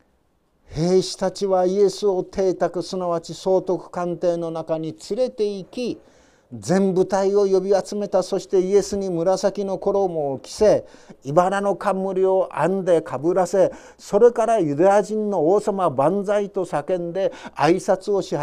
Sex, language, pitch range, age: male, Japanese, 160-195 Hz, 50-69